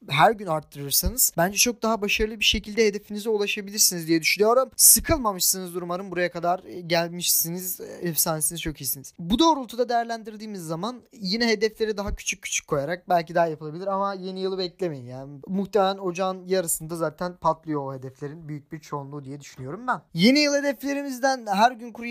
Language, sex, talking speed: Turkish, male, 155 wpm